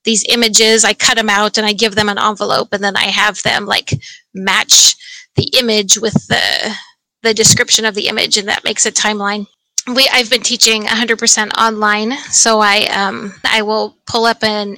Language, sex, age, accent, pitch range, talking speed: English, female, 30-49, American, 210-240 Hz, 190 wpm